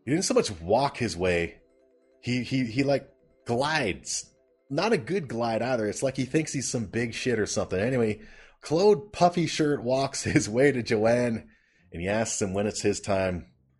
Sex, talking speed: male, 190 wpm